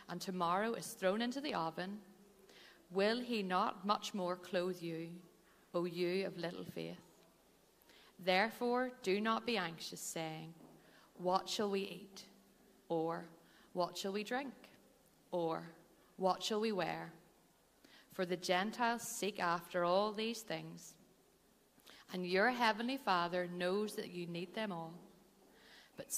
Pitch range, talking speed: 170-205 Hz, 135 wpm